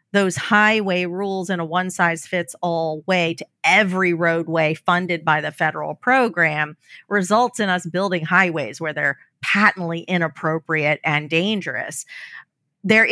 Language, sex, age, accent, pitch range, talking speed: English, female, 40-59, American, 165-210 Hz, 125 wpm